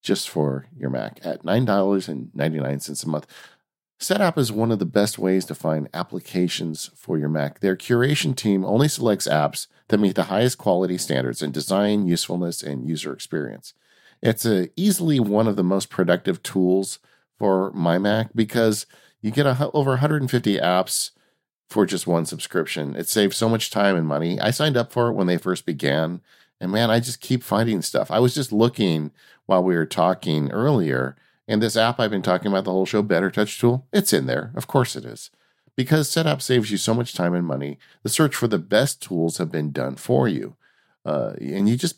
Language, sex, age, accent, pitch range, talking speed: English, male, 50-69, American, 85-120 Hz, 195 wpm